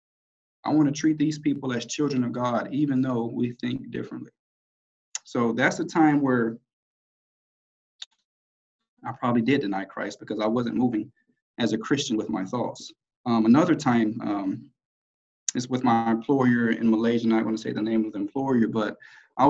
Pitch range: 115-155 Hz